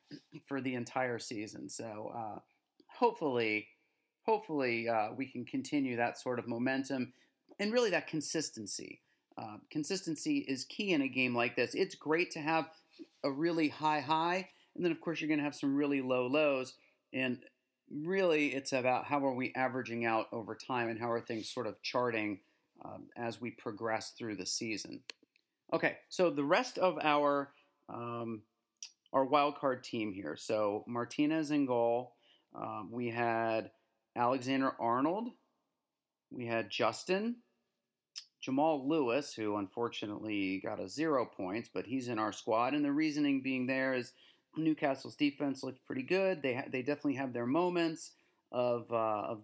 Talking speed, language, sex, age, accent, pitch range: 160 wpm, English, male, 40-59, American, 120-155 Hz